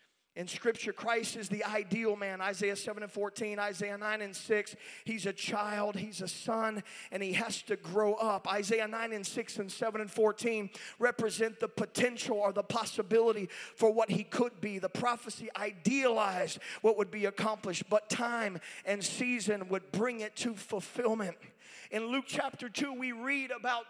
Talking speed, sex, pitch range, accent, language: 175 wpm, male, 210-240 Hz, American, English